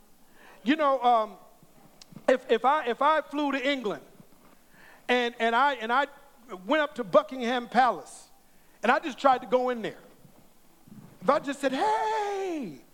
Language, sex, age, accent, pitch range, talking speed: English, male, 50-69, American, 235-350 Hz, 160 wpm